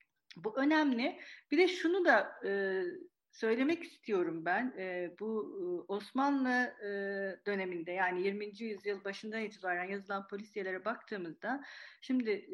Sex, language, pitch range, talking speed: female, Turkish, 195-255 Hz, 100 wpm